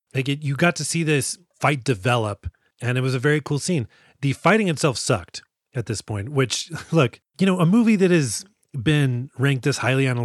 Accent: American